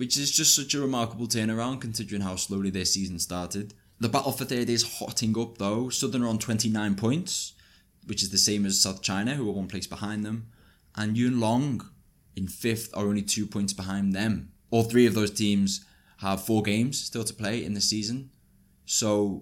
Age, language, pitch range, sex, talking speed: 20-39, English, 90-110 Hz, male, 200 wpm